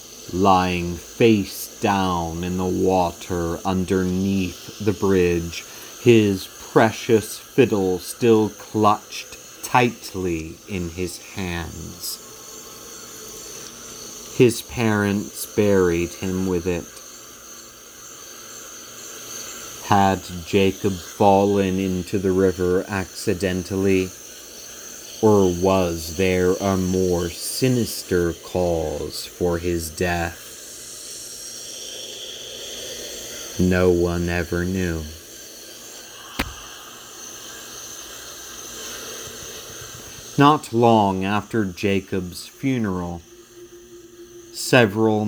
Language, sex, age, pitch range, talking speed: English, male, 30-49, 90-105 Hz, 70 wpm